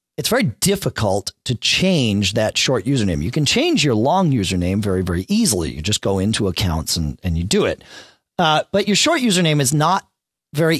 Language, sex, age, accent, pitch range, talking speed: English, male, 40-59, American, 110-170 Hz, 195 wpm